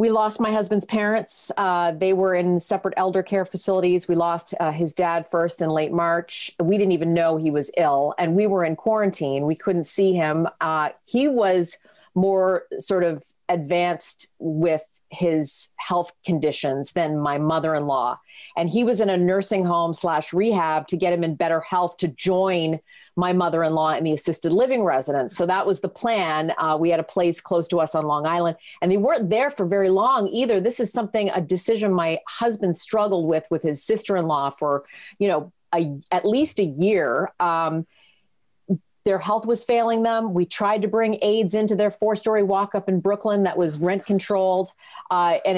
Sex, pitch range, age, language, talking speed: female, 165-205 Hz, 40-59, English, 190 wpm